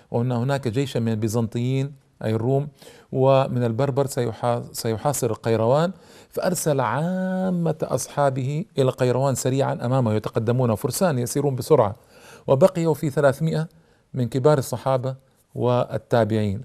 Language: Arabic